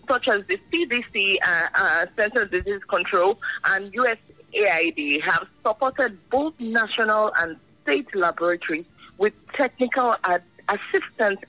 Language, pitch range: English, 205-295 Hz